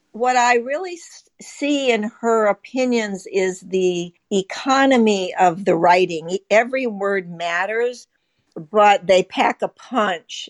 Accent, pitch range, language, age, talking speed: American, 180-230 Hz, English, 60-79, 120 wpm